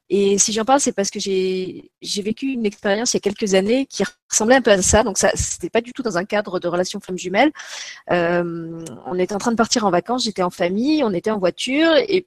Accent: French